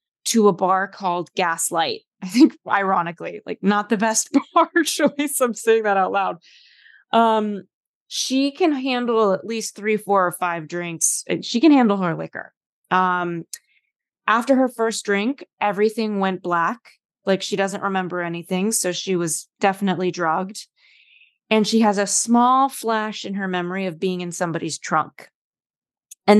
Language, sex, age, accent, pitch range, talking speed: English, female, 20-39, American, 185-235 Hz, 155 wpm